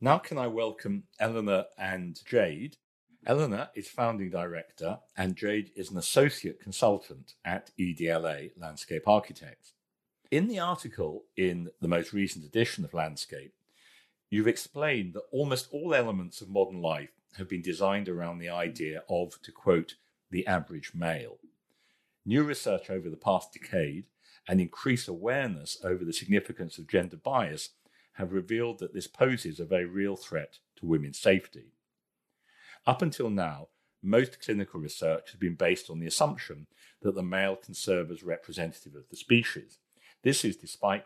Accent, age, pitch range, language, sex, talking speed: British, 40-59, 85-115 Hz, English, male, 150 wpm